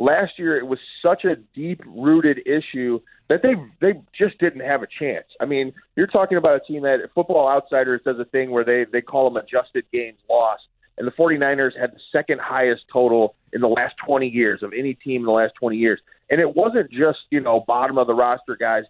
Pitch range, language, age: 125-155 Hz, English, 30-49